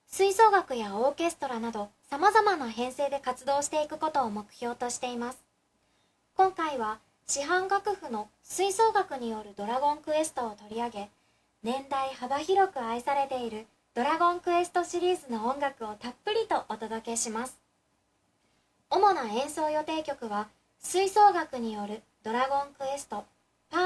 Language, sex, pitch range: Japanese, male, 240-325 Hz